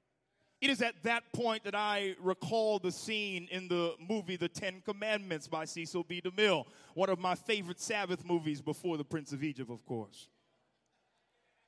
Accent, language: American, English